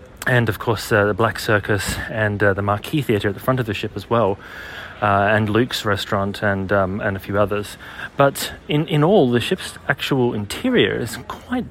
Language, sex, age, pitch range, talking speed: English, male, 30-49, 105-125 Hz, 205 wpm